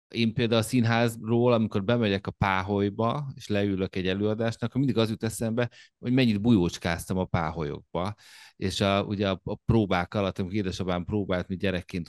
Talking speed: 160 wpm